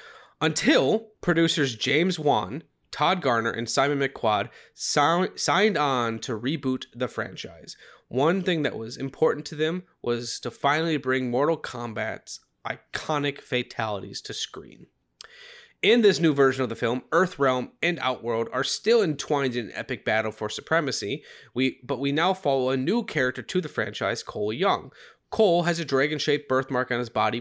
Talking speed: 160 wpm